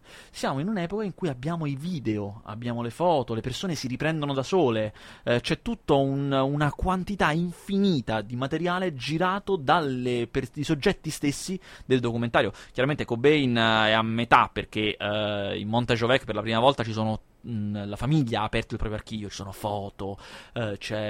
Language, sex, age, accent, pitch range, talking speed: Italian, male, 30-49, native, 110-145 Hz, 175 wpm